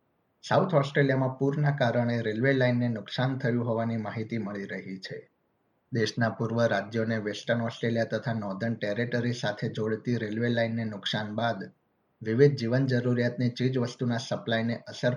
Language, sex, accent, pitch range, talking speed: Gujarati, male, native, 110-125 Hz, 145 wpm